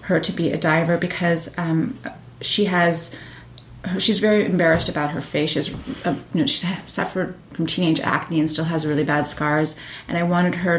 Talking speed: 190 wpm